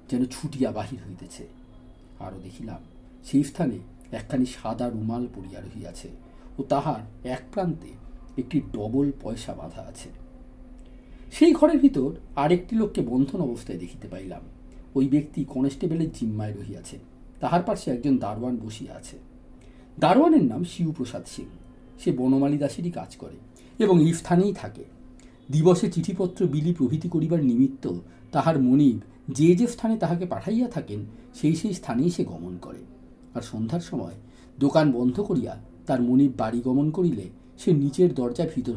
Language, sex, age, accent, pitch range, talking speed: Bengali, male, 50-69, native, 120-175 Hz, 140 wpm